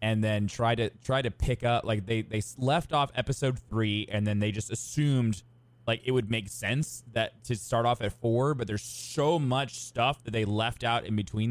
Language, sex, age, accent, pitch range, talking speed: English, male, 20-39, American, 105-125 Hz, 220 wpm